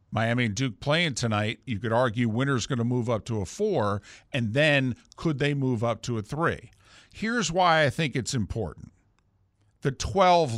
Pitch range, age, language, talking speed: 100-125 Hz, 50-69, English, 185 wpm